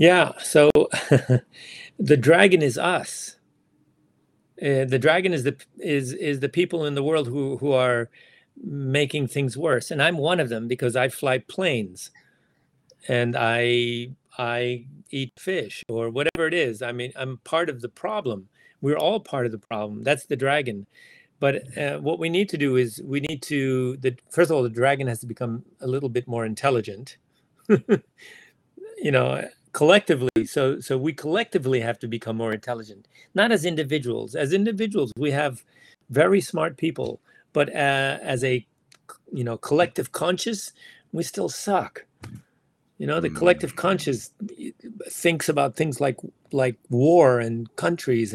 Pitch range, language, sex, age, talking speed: 120-155 Hz, English, male, 40-59, 160 wpm